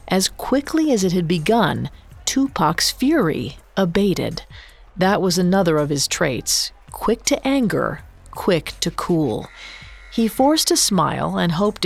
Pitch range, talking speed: 160-230 Hz, 135 wpm